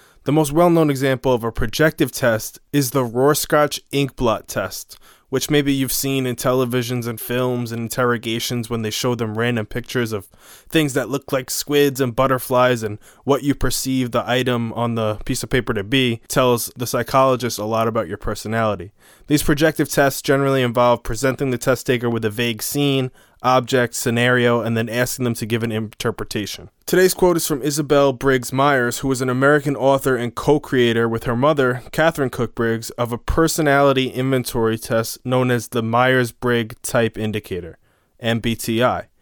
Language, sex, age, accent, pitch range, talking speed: English, male, 20-39, American, 115-140 Hz, 175 wpm